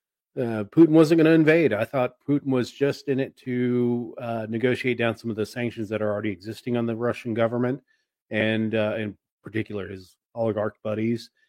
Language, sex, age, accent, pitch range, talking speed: English, male, 30-49, American, 110-135 Hz, 185 wpm